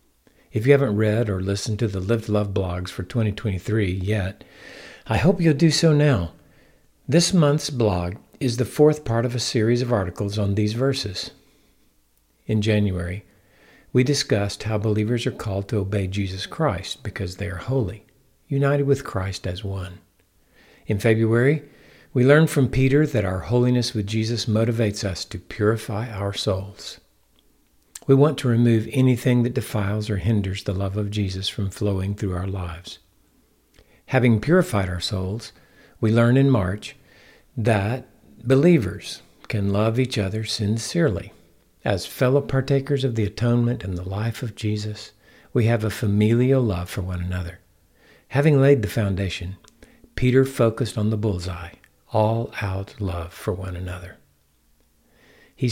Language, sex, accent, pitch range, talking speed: English, male, American, 95-125 Hz, 150 wpm